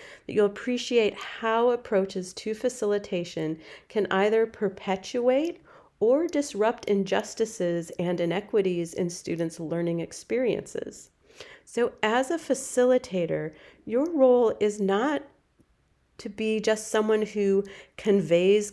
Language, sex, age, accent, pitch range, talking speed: English, female, 40-59, American, 165-225 Hz, 105 wpm